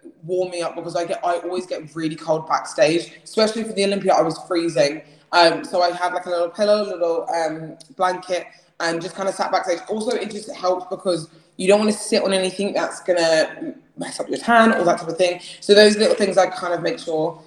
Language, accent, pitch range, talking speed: English, British, 175-210 Hz, 235 wpm